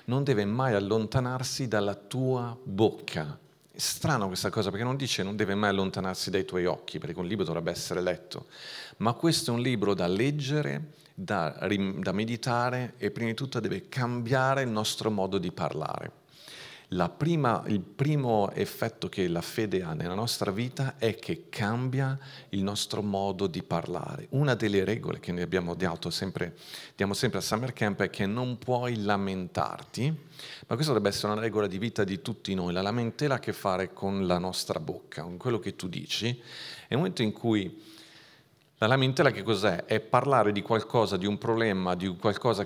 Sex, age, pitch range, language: male, 40-59, 95-125 Hz, Italian